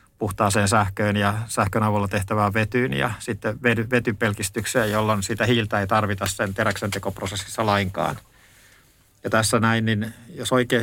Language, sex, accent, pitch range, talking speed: Finnish, male, native, 105-120 Hz, 135 wpm